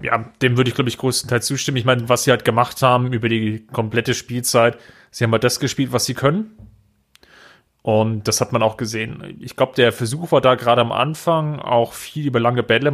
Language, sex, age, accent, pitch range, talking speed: German, male, 30-49, German, 110-130 Hz, 220 wpm